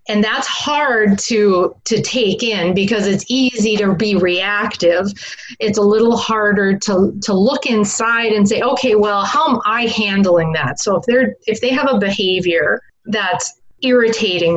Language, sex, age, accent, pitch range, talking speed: English, female, 30-49, American, 185-230 Hz, 165 wpm